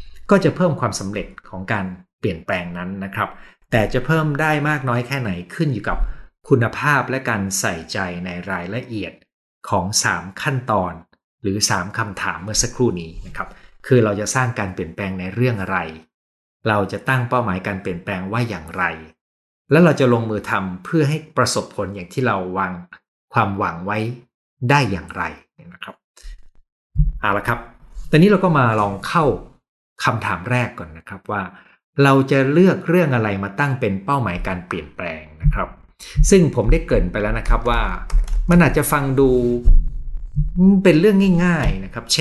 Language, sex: Thai, male